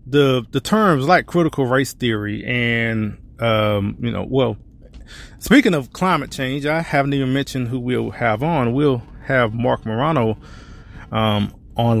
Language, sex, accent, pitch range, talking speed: English, male, American, 110-155 Hz, 150 wpm